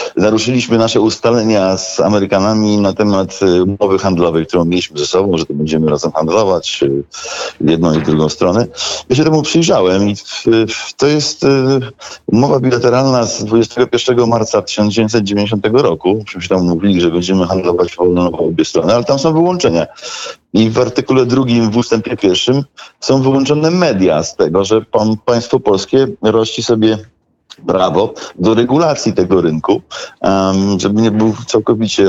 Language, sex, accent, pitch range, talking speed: Polish, male, native, 95-125 Hz, 145 wpm